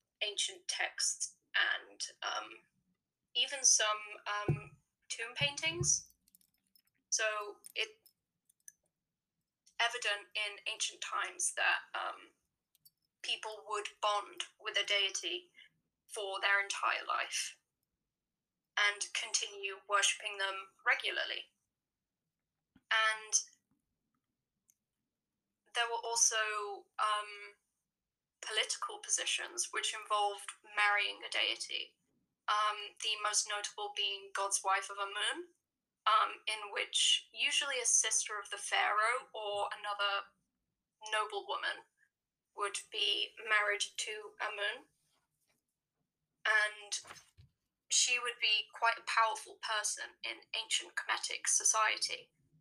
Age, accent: 10-29, British